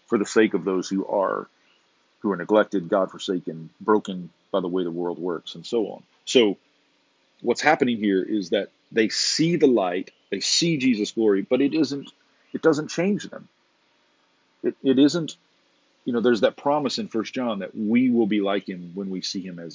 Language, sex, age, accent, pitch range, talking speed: English, male, 40-59, American, 95-140 Hz, 195 wpm